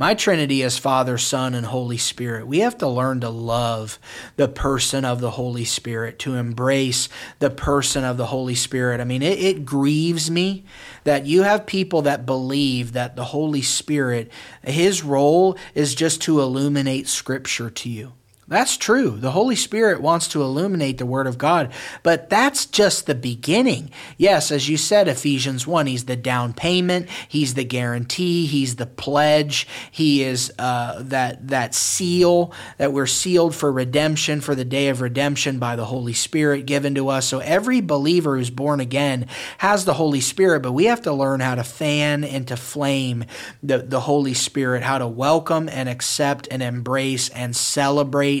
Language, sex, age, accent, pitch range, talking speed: English, male, 30-49, American, 125-155 Hz, 175 wpm